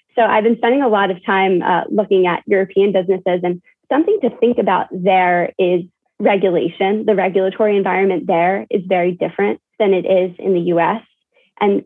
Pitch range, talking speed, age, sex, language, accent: 180-225 Hz, 175 wpm, 20-39, female, English, American